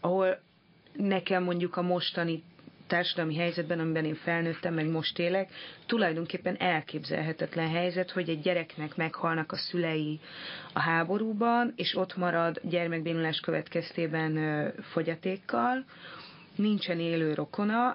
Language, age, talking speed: Hungarian, 30-49, 110 wpm